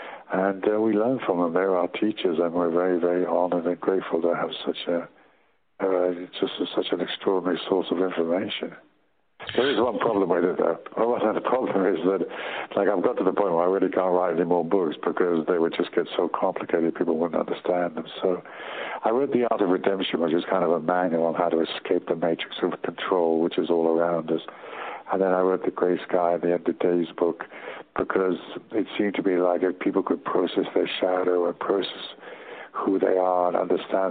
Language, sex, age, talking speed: English, male, 60-79, 215 wpm